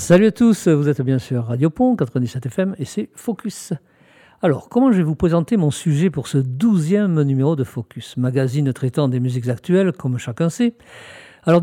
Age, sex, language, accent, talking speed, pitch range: 50-69, male, French, French, 190 wpm, 130-170 Hz